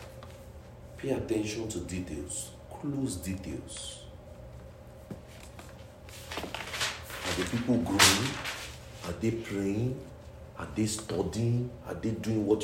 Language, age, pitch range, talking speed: English, 50-69, 80-105 Hz, 95 wpm